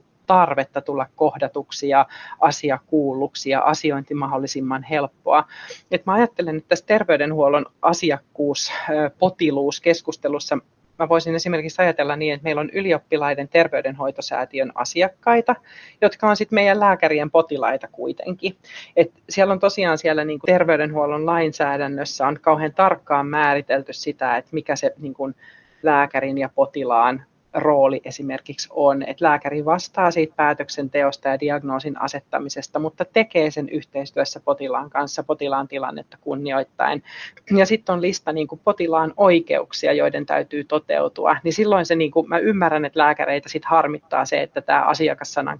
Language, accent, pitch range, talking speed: Finnish, native, 140-170 Hz, 130 wpm